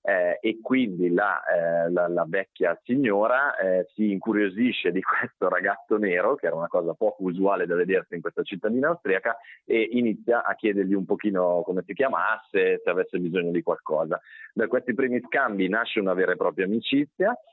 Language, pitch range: Italian, 90-135 Hz